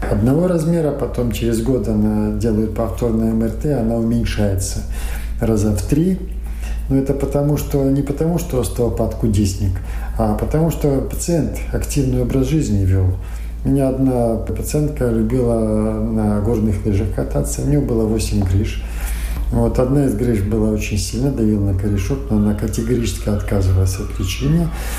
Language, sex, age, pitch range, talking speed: Russian, male, 40-59, 95-130 Hz, 145 wpm